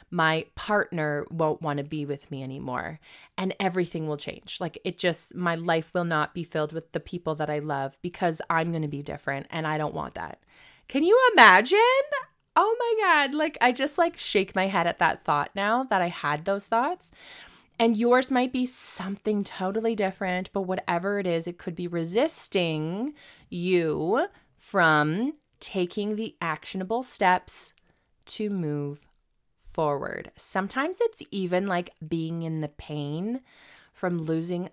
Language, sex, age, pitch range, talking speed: English, female, 20-39, 155-210 Hz, 165 wpm